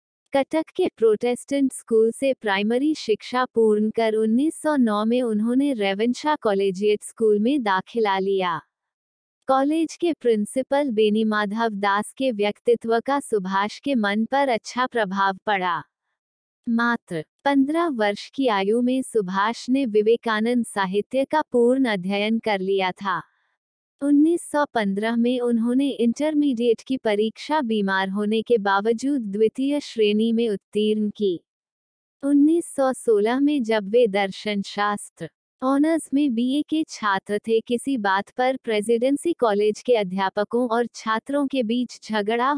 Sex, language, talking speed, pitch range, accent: female, Hindi, 125 wpm, 210-265 Hz, native